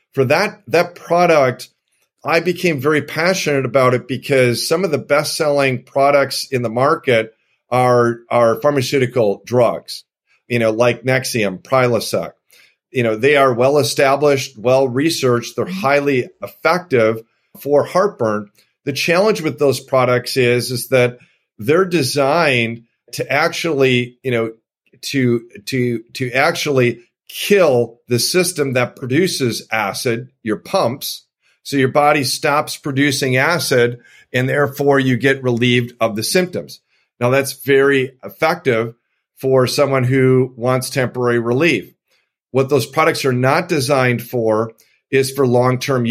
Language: English